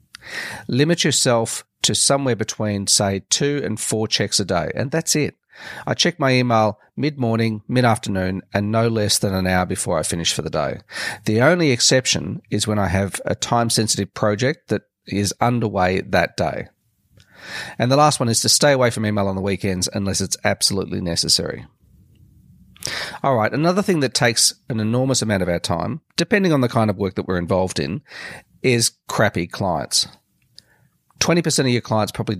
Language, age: English, 40-59